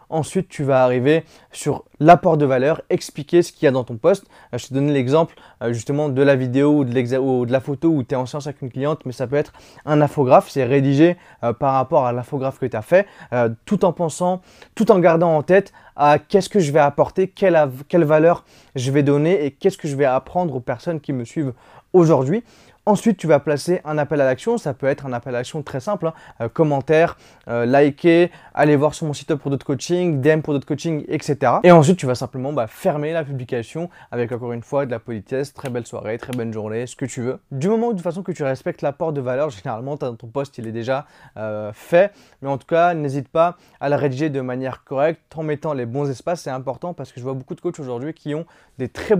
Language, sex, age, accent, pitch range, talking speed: French, male, 20-39, French, 130-165 Hz, 245 wpm